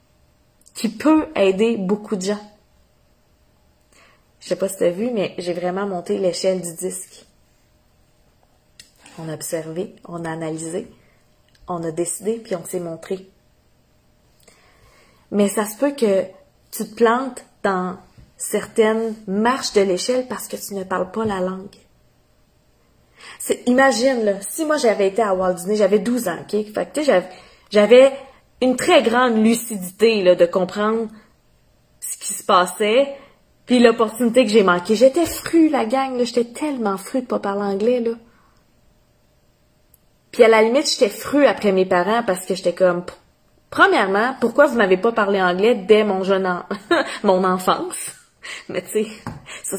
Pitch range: 180-235 Hz